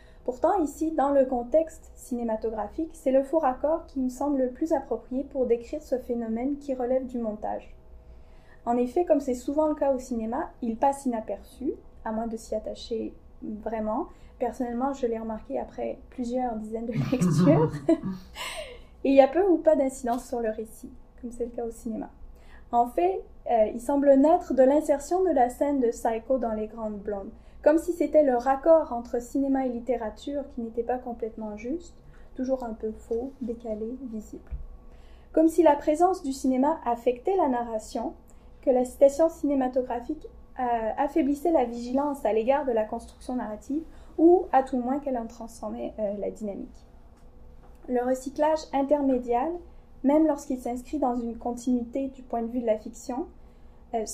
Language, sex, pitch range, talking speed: French, female, 230-285 Hz, 170 wpm